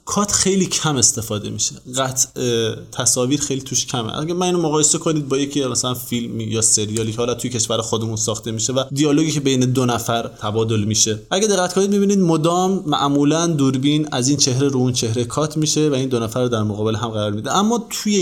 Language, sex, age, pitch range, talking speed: Persian, male, 20-39, 120-155 Hz, 210 wpm